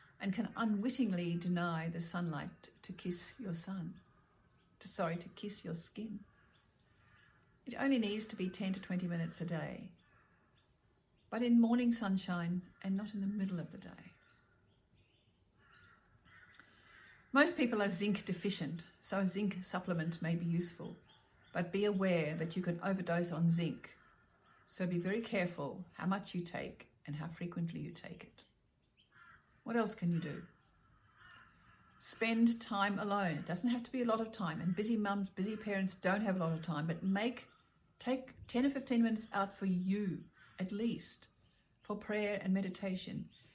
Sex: female